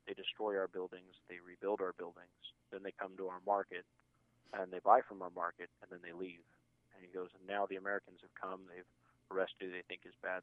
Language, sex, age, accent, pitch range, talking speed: English, male, 30-49, American, 90-100 Hz, 230 wpm